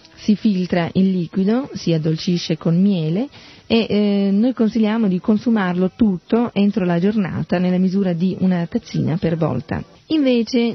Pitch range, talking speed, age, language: 170-210 Hz, 145 wpm, 40-59, Italian